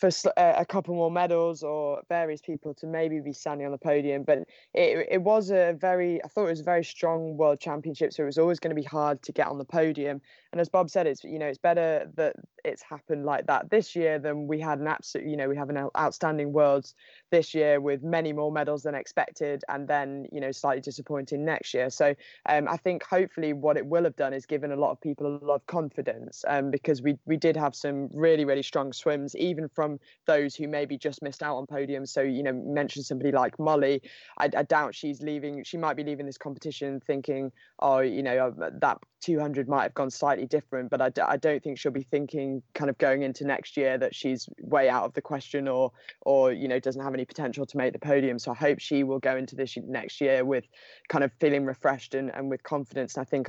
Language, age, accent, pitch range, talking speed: English, 20-39, British, 140-155 Hz, 240 wpm